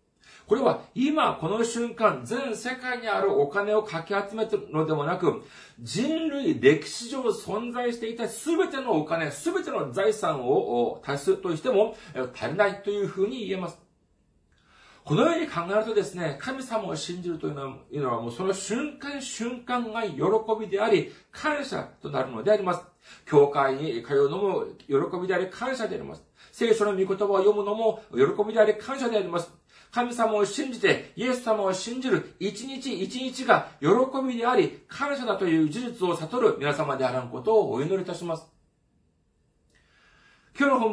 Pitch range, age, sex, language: 165-240 Hz, 40-59, male, Japanese